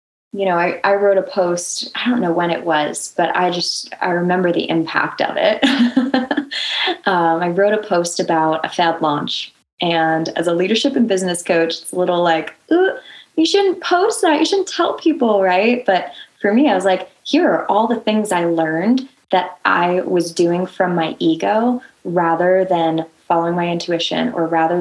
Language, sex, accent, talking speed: English, female, American, 190 wpm